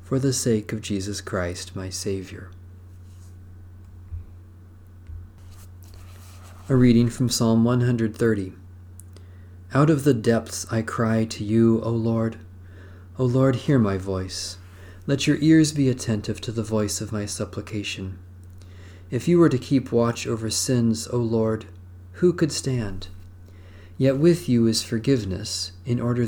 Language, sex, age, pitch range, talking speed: English, male, 40-59, 90-120 Hz, 135 wpm